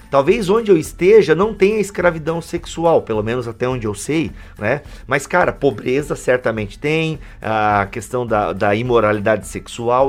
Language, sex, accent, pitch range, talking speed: Portuguese, male, Brazilian, 115-160 Hz, 155 wpm